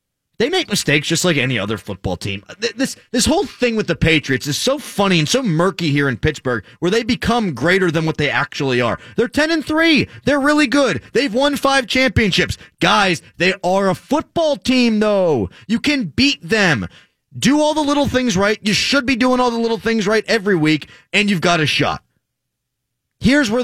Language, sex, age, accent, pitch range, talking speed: English, male, 30-49, American, 125-205 Hz, 200 wpm